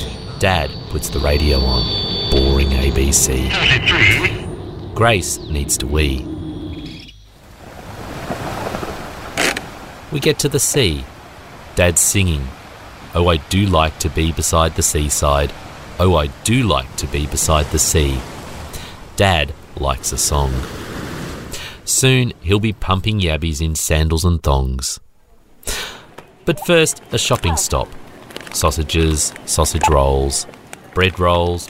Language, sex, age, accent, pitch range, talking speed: English, male, 40-59, Australian, 75-105 Hz, 110 wpm